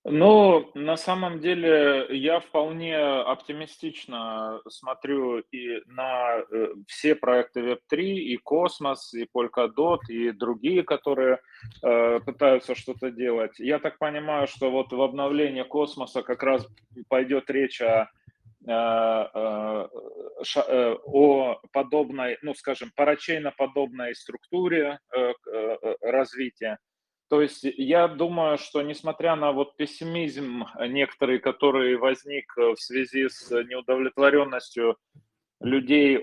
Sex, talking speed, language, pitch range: male, 105 wpm, Russian, 115-150 Hz